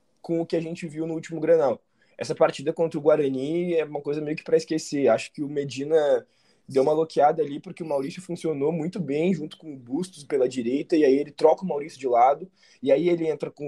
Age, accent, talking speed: 20-39, Brazilian, 235 wpm